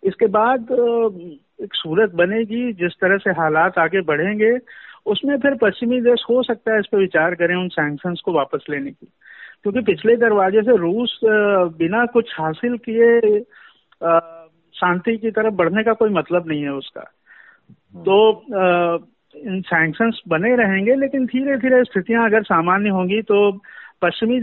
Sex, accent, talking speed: male, native, 150 wpm